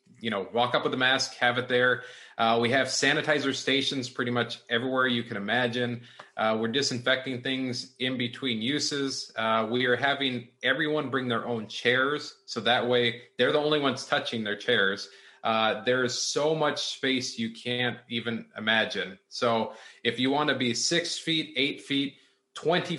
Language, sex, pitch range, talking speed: English, male, 115-135 Hz, 170 wpm